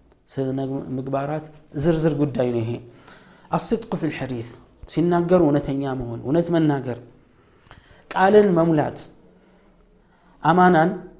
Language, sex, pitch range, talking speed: Amharic, male, 140-155 Hz, 85 wpm